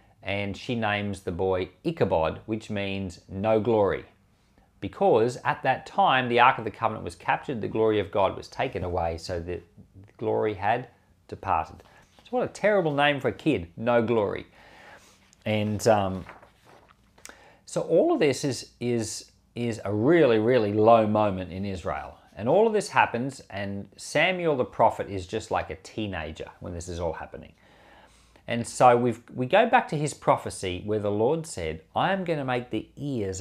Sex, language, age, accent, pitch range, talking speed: male, English, 40-59, Australian, 95-120 Hz, 175 wpm